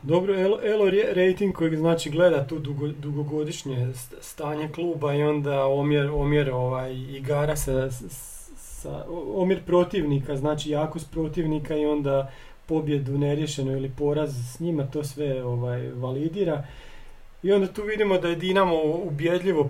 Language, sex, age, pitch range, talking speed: Croatian, male, 40-59, 135-165 Hz, 135 wpm